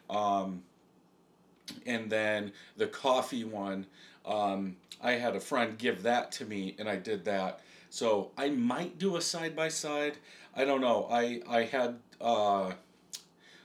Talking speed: 140 wpm